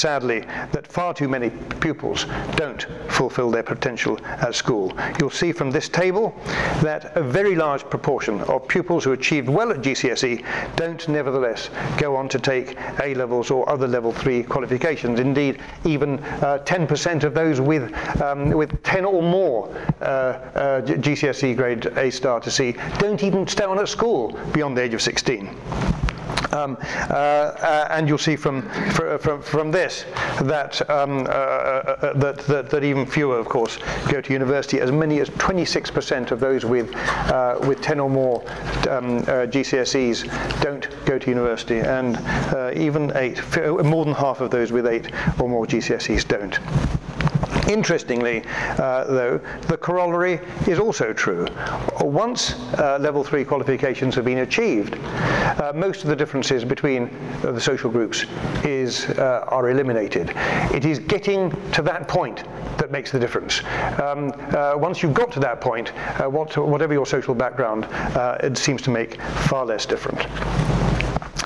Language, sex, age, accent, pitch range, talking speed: English, male, 60-79, British, 130-155 Hz, 160 wpm